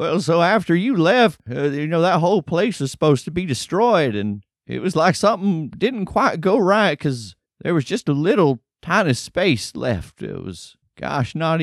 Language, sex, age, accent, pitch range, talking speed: English, male, 30-49, American, 110-155 Hz, 195 wpm